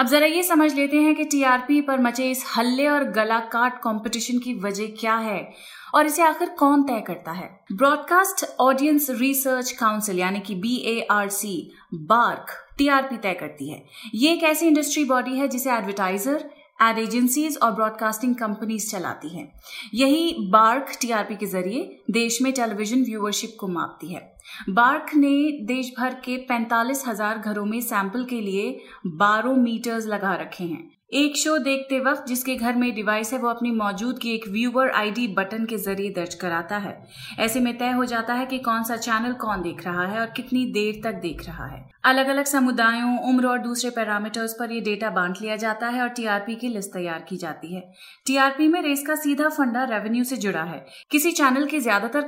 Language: Hindi